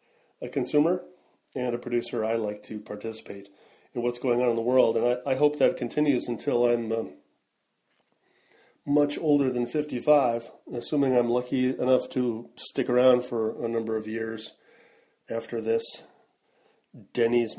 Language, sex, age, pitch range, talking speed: English, male, 40-59, 115-135 Hz, 150 wpm